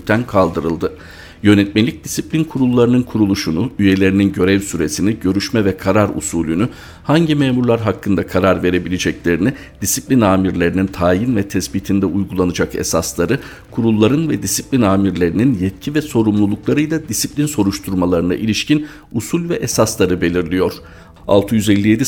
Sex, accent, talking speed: male, native, 105 wpm